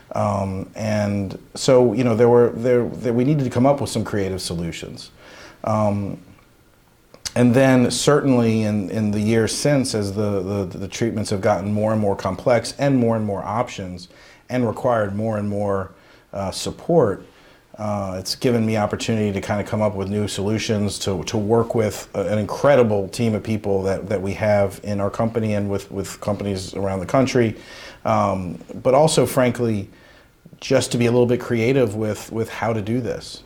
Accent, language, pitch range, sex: American, English, 95-115 Hz, male